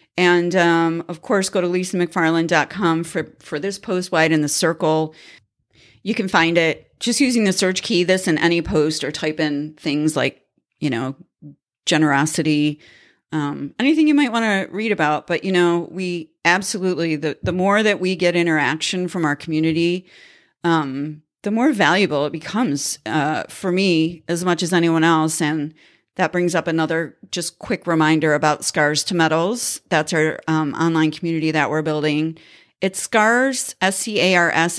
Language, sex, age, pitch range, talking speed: English, female, 40-59, 155-180 Hz, 165 wpm